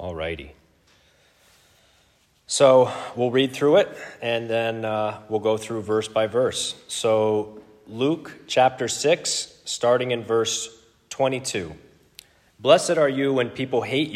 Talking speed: 125 wpm